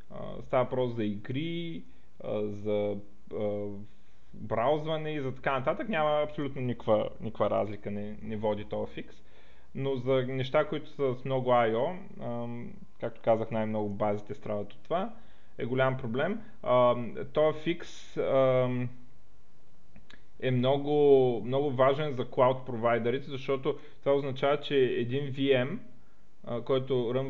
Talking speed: 120 wpm